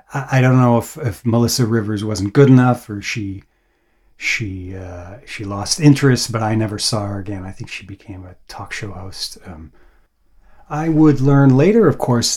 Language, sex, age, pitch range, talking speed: English, male, 40-59, 105-125 Hz, 185 wpm